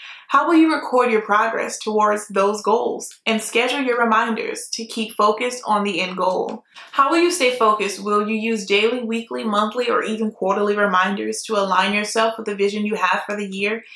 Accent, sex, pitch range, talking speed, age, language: American, female, 205-235 Hz, 200 wpm, 20-39, English